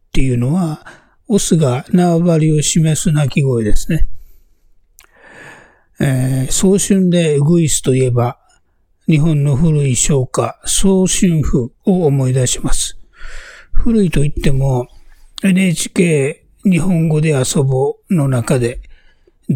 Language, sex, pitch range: Japanese, male, 120-160 Hz